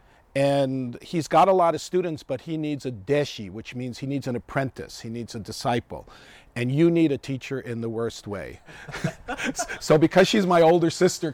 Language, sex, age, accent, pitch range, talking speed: English, male, 50-69, American, 130-160 Hz, 195 wpm